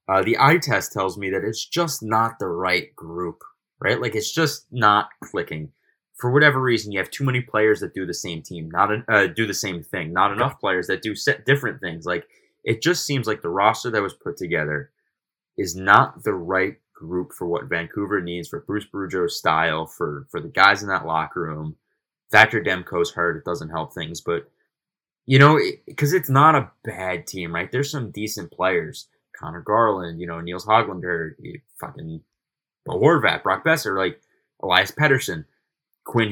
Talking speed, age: 190 wpm, 20-39